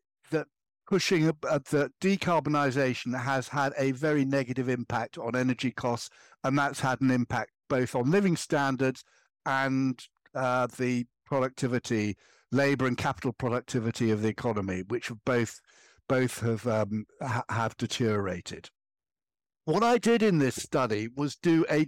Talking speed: 135 wpm